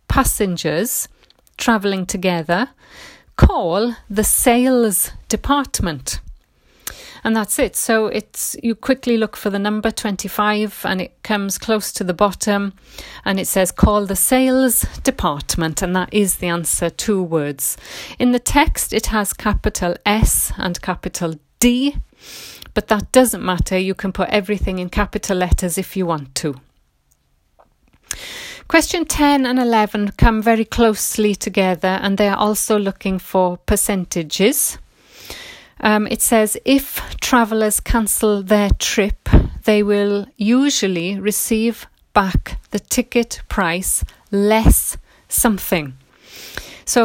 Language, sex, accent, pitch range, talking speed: English, female, British, 185-230 Hz, 125 wpm